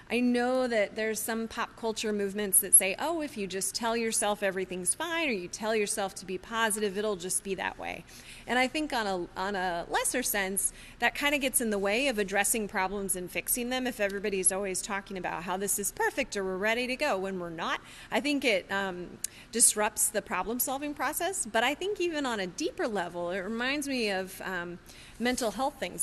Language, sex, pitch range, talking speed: English, female, 195-245 Hz, 215 wpm